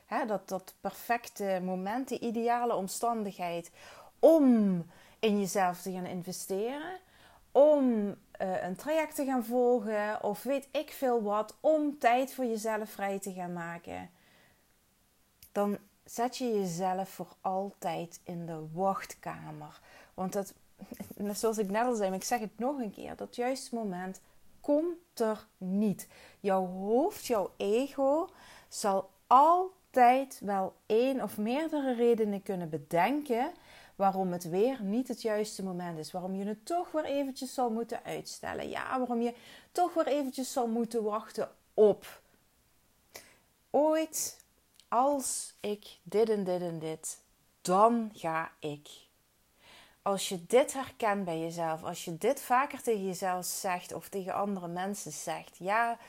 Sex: female